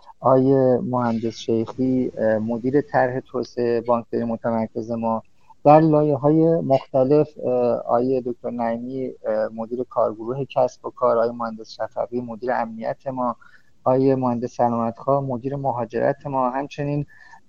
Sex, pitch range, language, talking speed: male, 120-135 Hz, Persian, 115 wpm